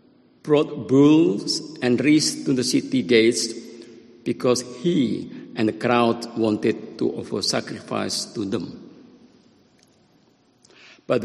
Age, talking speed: 50-69, 105 wpm